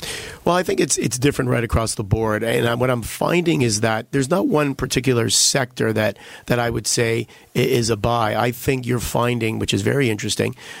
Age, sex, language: 40-59, male, English